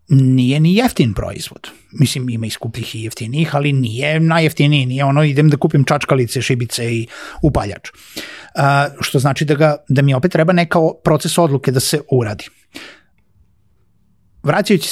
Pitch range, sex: 130-170 Hz, male